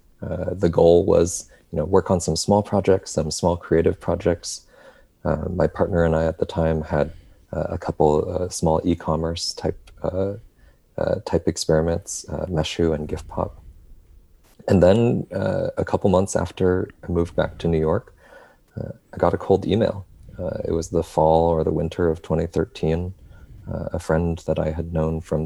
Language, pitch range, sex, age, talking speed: English, 80-90 Hz, male, 30-49, 180 wpm